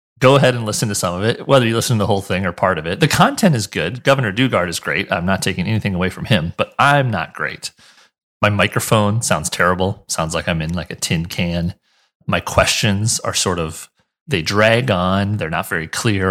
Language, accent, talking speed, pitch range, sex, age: English, American, 230 wpm, 90-120 Hz, male, 30-49